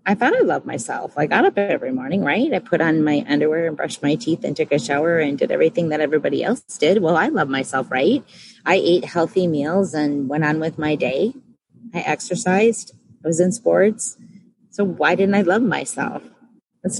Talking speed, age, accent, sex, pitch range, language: 210 wpm, 30-49, American, female, 155-195 Hz, English